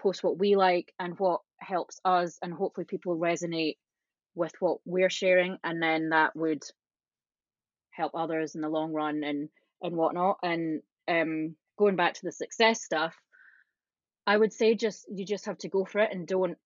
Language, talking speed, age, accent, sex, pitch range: English, 180 wpm, 20-39, British, female, 165-195 Hz